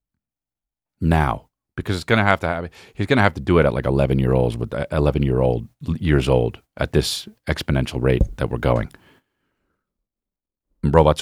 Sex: male